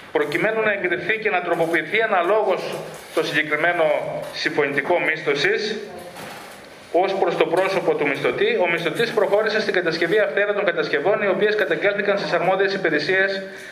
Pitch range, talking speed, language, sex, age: 165-210 Hz, 135 wpm, Greek, male, 40-59